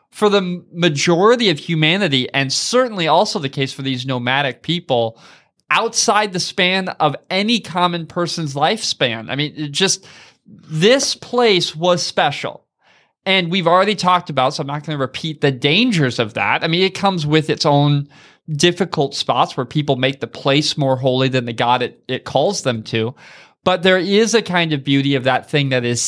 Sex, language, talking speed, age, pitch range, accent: male, English, 185 wpm, 20-39, 135-175 Hz, American